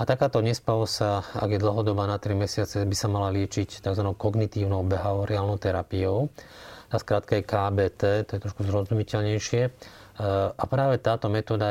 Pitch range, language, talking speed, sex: 100-110 Hz, Slovak, 145 wpm, male